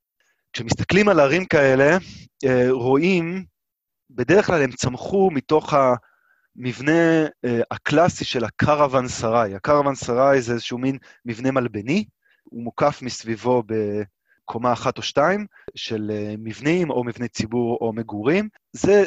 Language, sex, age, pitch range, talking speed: Hebrew, male, 20-39, 120-165 Hz, 115 wpm